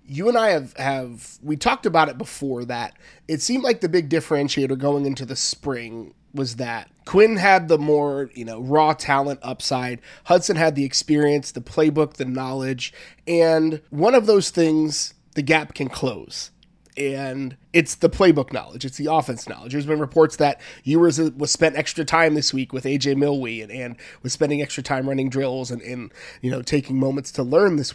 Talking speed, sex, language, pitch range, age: 195 wpm, male, English, 135-170 Hz, 30-49